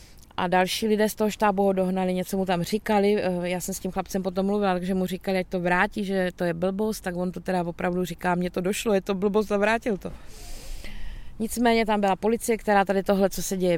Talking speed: 230 wpm